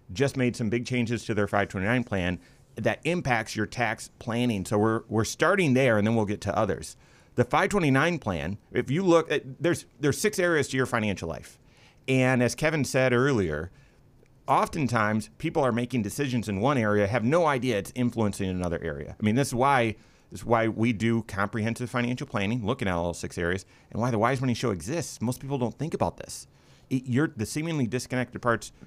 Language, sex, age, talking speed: English, male, 30-49, 200 wpm